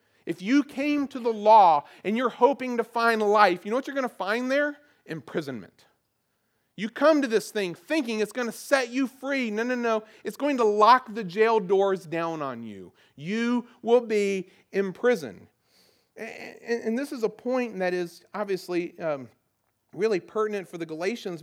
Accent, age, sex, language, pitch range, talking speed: American, 40-59, male, English, 190-245 Hz, 175 wpm